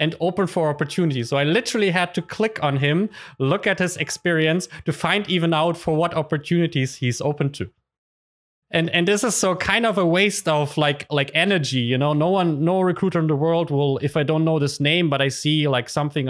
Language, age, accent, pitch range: English, 30-49, German, 130-170 Hz